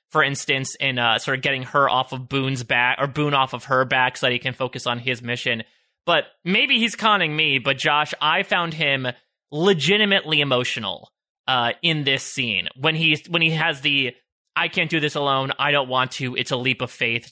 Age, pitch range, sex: 20-39, 130-170 Hz, male